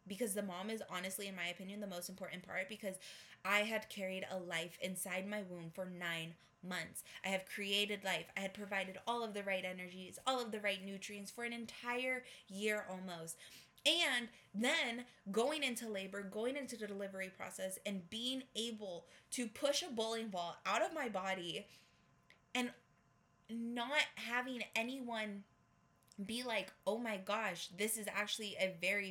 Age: 20-39